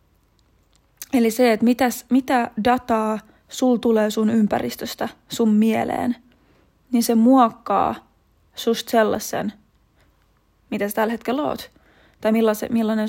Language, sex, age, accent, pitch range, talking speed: Finnish, female, 20-39, native, 220-250 Hz, 110 wpm